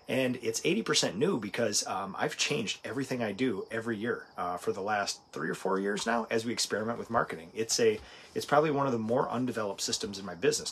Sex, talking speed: male, 225 wpm